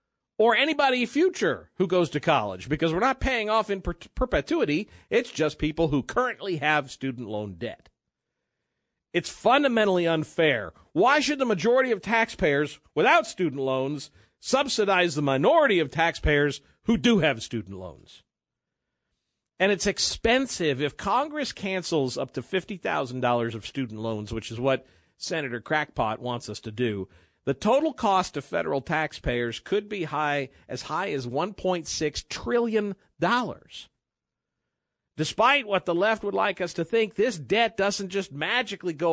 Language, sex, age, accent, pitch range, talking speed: English, male, 50-69, American, 145-225 Hz, 145 wpm